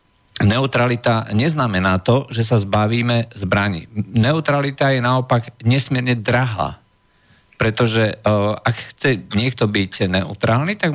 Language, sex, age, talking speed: Slovak, male, 50-69, 110 wpm